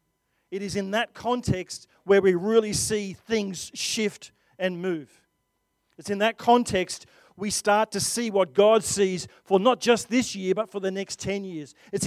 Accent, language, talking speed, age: Australian, English, 180 wpm, 40-59